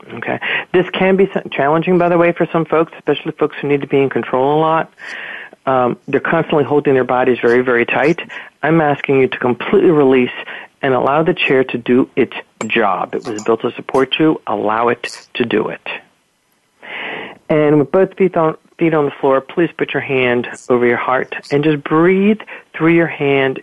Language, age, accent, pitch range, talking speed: English, 50-69, American, 130-160 Hz, 195 wpm